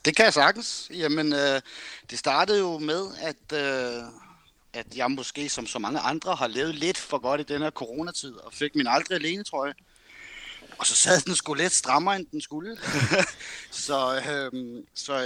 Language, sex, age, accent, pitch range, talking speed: Danish, male, 30-49, native, 115-155 Hz, 185 wpm